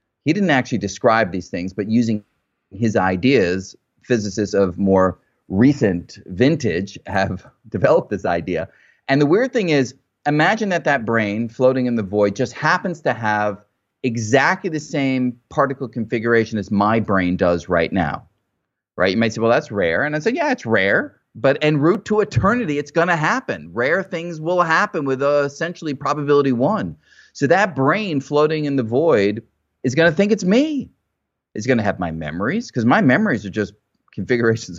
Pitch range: 110-160 Hz